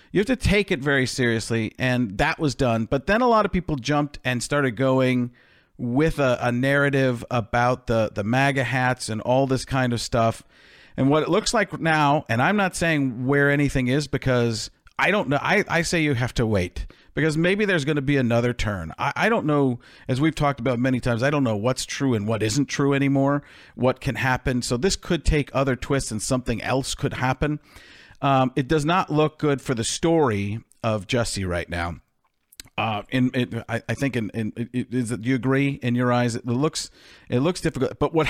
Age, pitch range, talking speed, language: 40-59, 115-145 Hz, 215 wpm, English